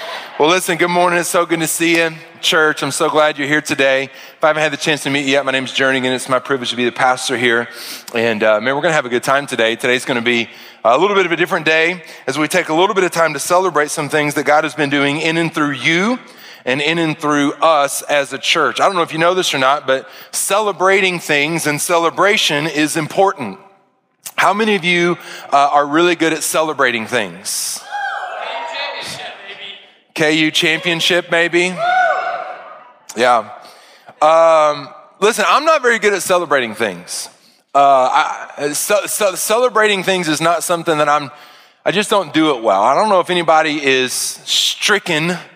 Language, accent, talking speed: English, American, 195 wpm